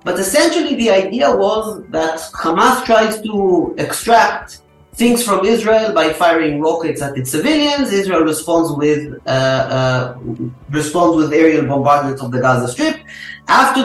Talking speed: 130 wpm